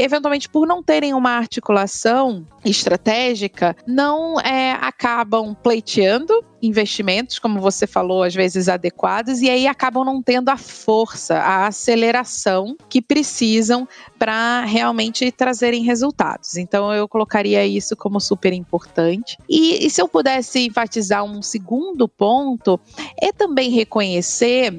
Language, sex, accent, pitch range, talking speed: Portuguese, female, Brazilian, 195-245 Hz, 130 wpm